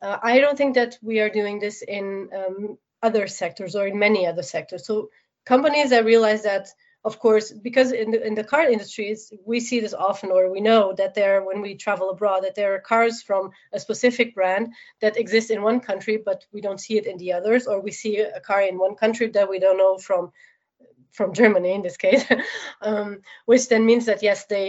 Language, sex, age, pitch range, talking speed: English, female, 30-49, 190-230 Hz, 220 wpm